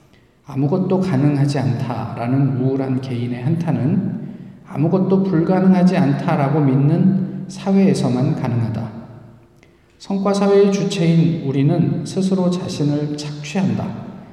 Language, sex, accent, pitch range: Korean, male, native, 130-175 Hz